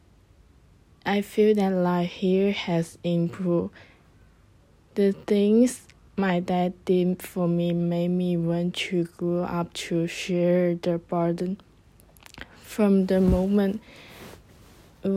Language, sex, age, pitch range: Chinese, female, 20-39, 170-190 Hz